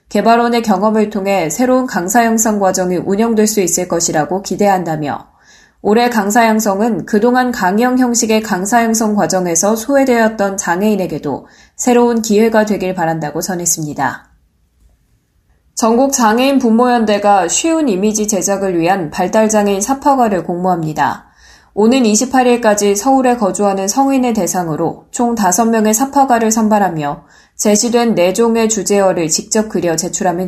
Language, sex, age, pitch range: Korean, female, 20-39, 185-240 Hz